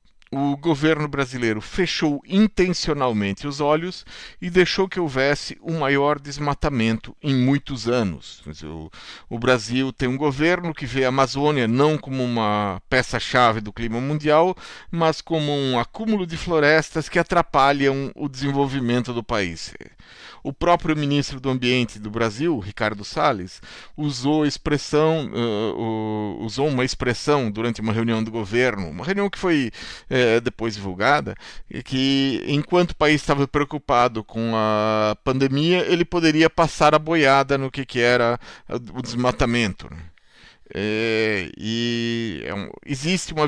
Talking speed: 130 wpm